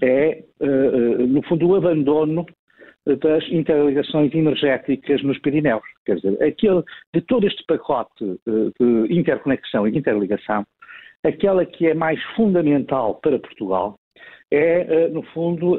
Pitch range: 135-175 Hz